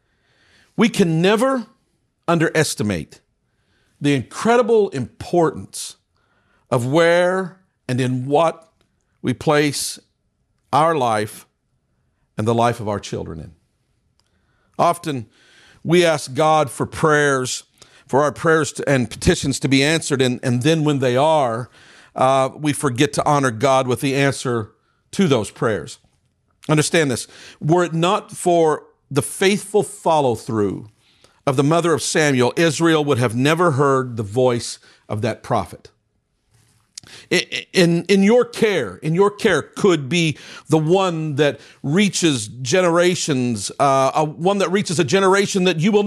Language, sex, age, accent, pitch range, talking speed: English, male, 50-69, American, 135-180 Hz, 135 wpm